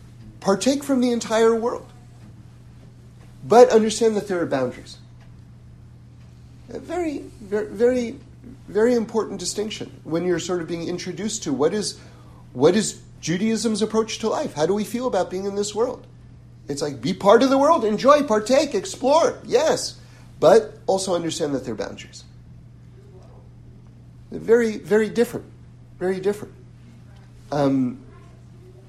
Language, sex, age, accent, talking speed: English, male, 40-59, American, 135 wpm